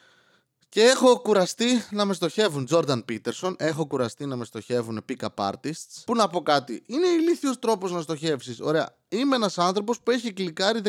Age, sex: 20-39, male